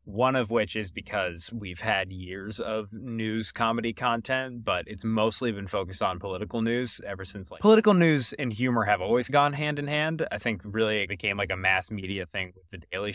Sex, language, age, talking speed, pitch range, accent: male, English, 20-39, 210 wpm, 95-120 Hz, American